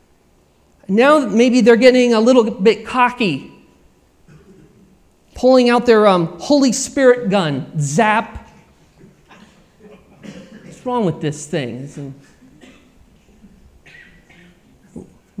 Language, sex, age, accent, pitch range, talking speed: English, male, 40-59, American, 160-235 Hz, 85 wpm